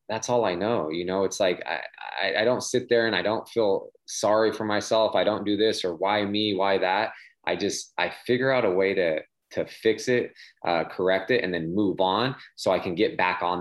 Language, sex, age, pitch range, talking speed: English, male, 20-39, 90-110 Hz, 240 wpm